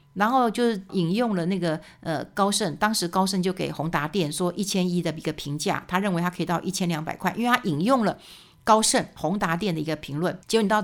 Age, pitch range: 60-79, 170-225 Hz